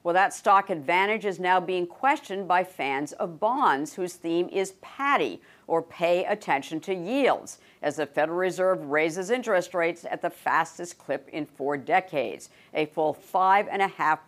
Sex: female